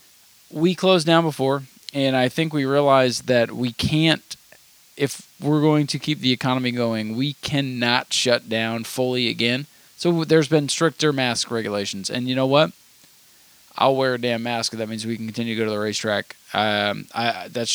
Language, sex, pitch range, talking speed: English, male, 115-150 Hz, 185 wpm